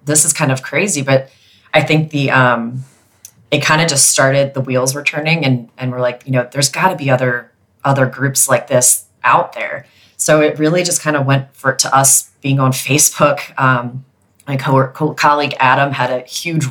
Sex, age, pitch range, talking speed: female, 30-49, 125-140 Hz, 205 wpm